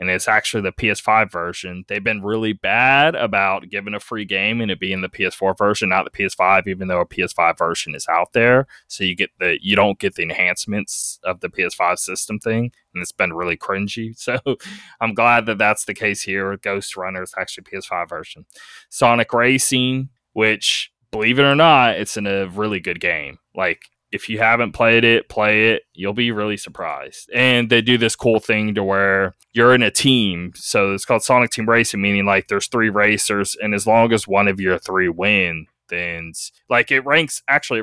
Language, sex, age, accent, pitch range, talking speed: English, male, 20-39, American, 100-115 Hz, 200 wpm